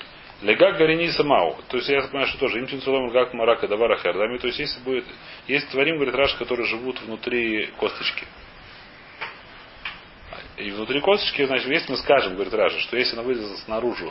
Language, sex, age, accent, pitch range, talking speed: Russian, male, 30-49, native, 120-145 Hz, 160 wpm